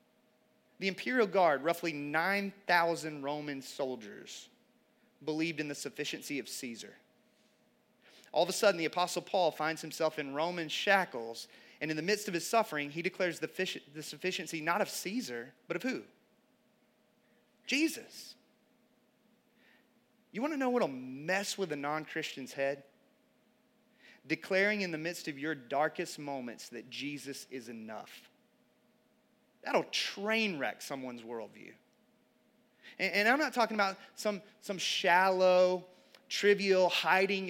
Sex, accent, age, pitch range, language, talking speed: male, American, 30-49, 155-210 Hz, English, 130 wpm